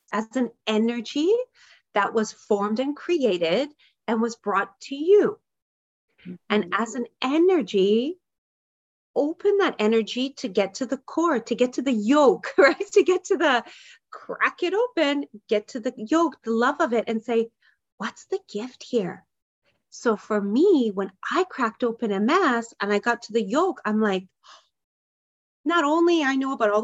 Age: 30-49